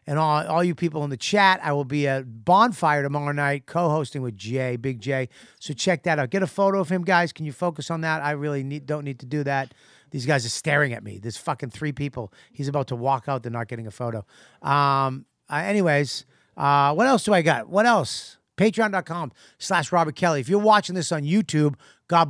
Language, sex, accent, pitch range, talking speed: English, male, American, 130-165 Hz, 230 wpm